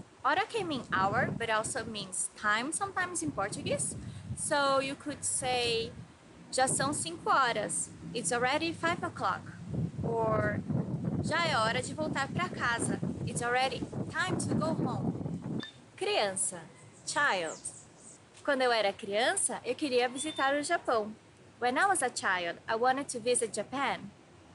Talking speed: 140 wpm